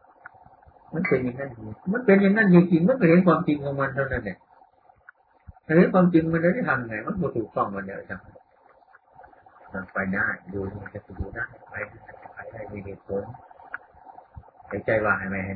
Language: Thai